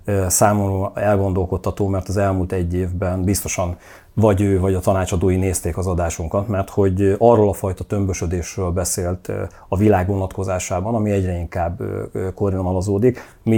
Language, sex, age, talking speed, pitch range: Hungarian, male, 40-59, 135 wpm, 90-105 Hz